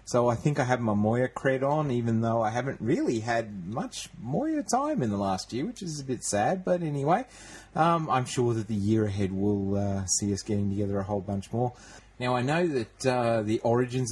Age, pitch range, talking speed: 30-49, 100-130 Hz, 225 wpm